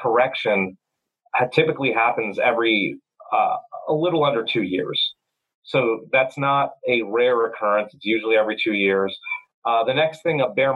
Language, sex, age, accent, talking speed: English, male, 30-49, American, 155 wpm